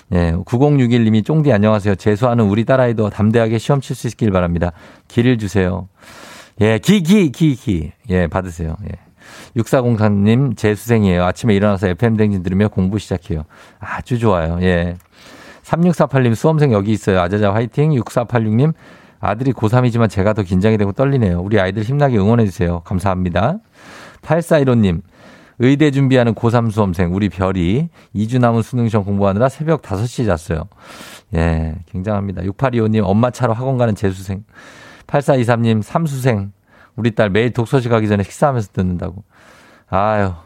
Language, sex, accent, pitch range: Korean, male, native, 100-130 Hz